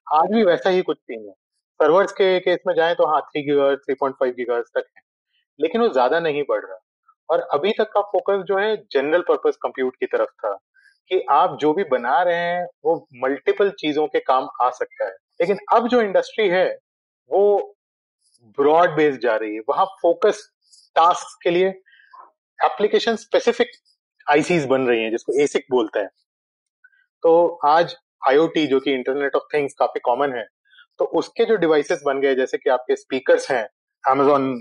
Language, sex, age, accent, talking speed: Hindi, male, 30-49, native, 125 wpm